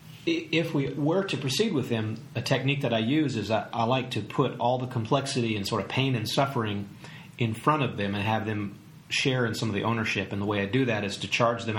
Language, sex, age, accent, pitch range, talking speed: English, male, 40-59, American, 105-135 Hz, 255 wpm